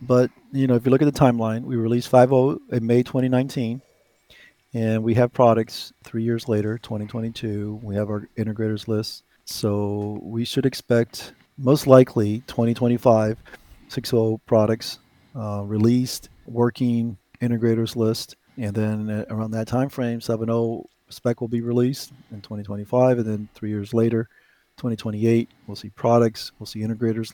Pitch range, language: 110-125 Hz, English